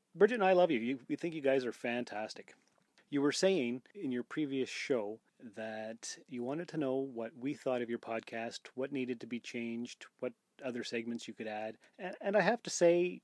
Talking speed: 215 wpm